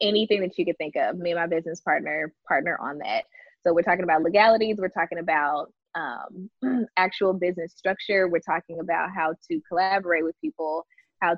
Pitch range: 165-195 Hz